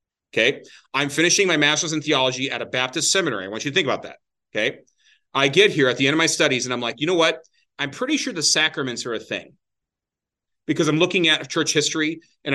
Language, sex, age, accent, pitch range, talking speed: English, male, 30-49, American, 130-165 Hz, 235 wpm